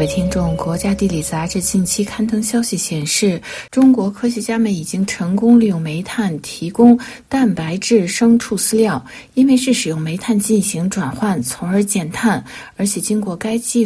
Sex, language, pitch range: female, Chinese, 185-230 Hz